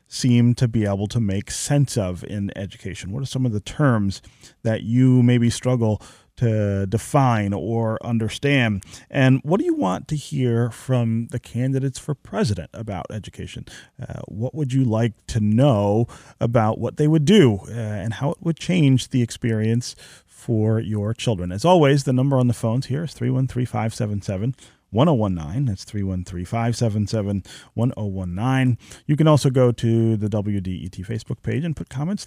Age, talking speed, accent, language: 30-49, 170 wpm, American, English